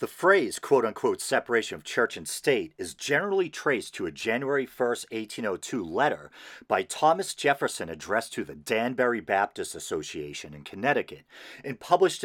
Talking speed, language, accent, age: 145 wpm, English, American, 40-59